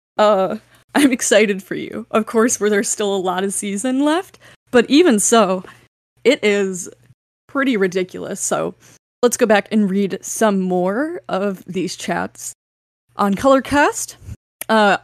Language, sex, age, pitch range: English, female, 10-29, 190-240 Hz